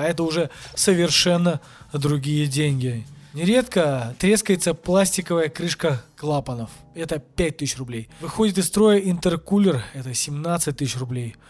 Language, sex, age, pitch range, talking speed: Russian, male, 20-39, 155-205 Hz, 110 wpm